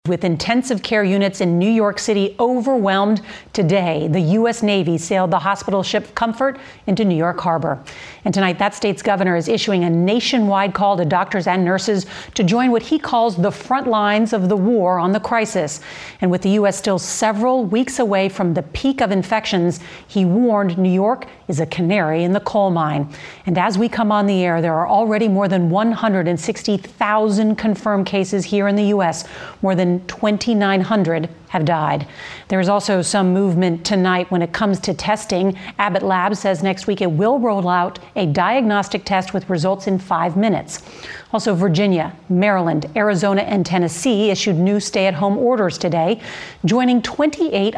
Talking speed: 175 wpm